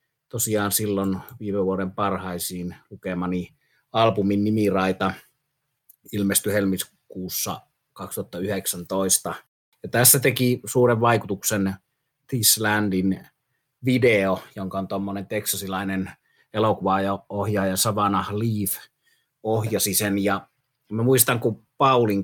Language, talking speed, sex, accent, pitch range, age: Finnish, 85 wpm, male, native, 95-110 Hz, 30-49